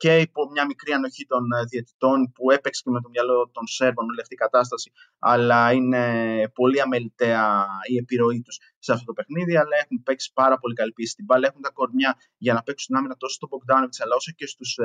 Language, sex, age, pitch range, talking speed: Greek, male, 20-39, 120-145 Hz, 205 wpm